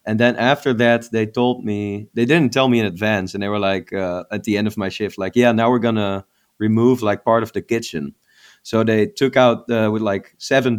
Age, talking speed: 20-39, 240 wpm